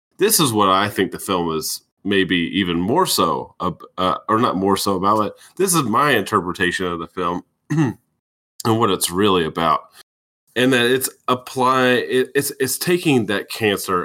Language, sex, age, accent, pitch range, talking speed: English, male, 30-49, American, 85-120 Hz, 170 wpm